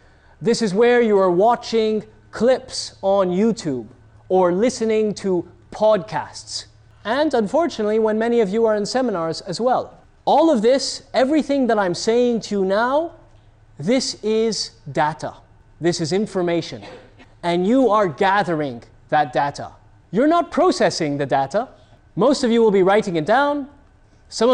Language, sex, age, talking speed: English, male, 30-49, 145 wpm